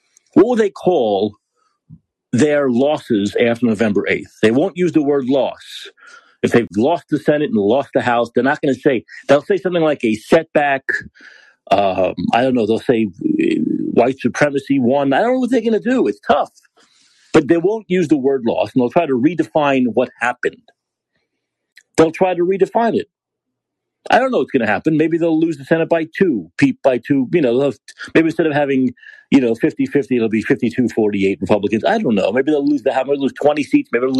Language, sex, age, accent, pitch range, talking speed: English, male, 50-69, American, 125-185 Hz, 205 wpm